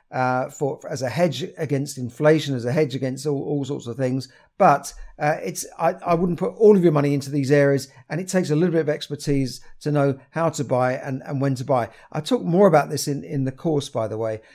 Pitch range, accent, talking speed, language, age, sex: 130-170 Hz, British, 250 wpm, English, 50-69, male